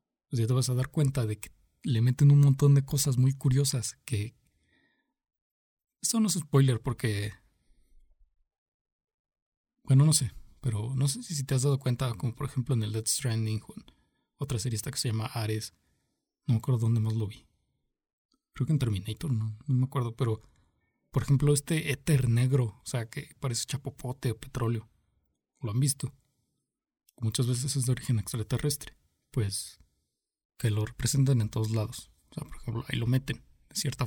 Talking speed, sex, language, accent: 180 wpm, male, Spanish, Mexican